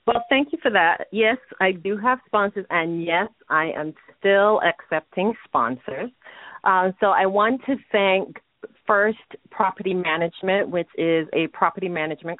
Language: English